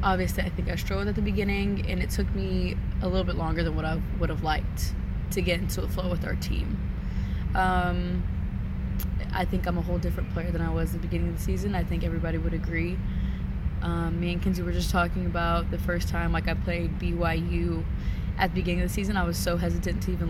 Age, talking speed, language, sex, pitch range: 20-39, 235 wpm, English, female, 85-95 Hz